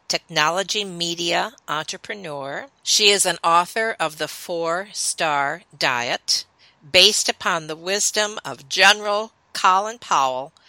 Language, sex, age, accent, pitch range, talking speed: English, female, 50-69, American, 145-195 Hz, 110 wpm